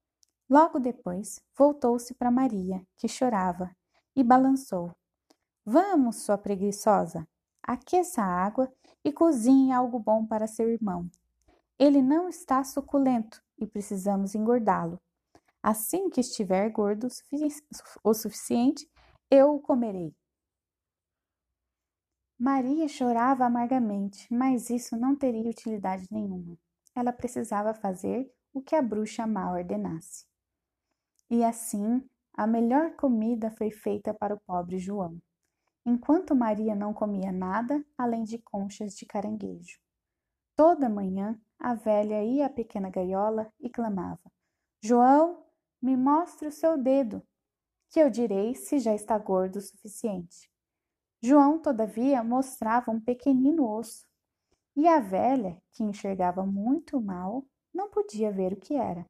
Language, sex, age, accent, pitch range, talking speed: Portuguese, female, 20-39, Brazilian, 200-265 Hz, 125 wpm